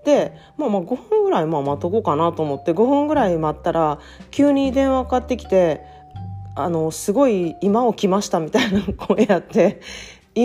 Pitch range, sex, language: 165-230 Hz, female, Japanese